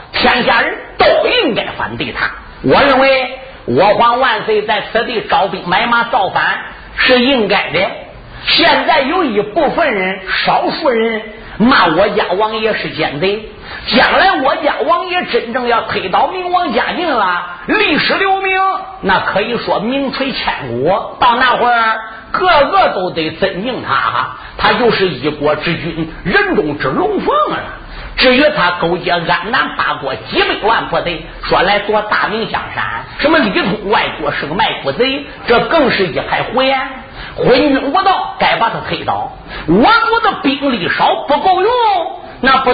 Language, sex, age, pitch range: Chinese, male, 50-69, 200-290 Hz